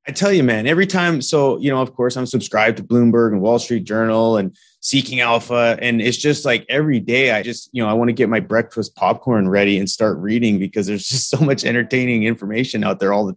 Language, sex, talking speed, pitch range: English, male, 240 wpm, 105-120 Hz